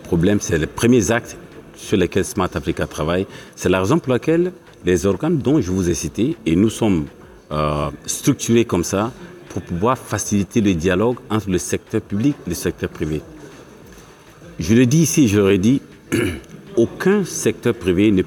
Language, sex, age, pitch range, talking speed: Arabic, male, 50-69, 90-120 Hz, 170 wpm